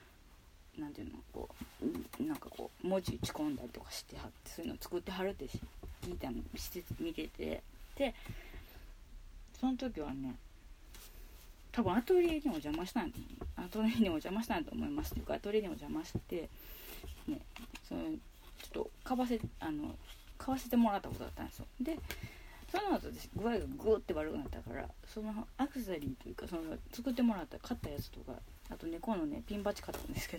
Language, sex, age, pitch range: Japanese, female, 20-39, 215-285 Hz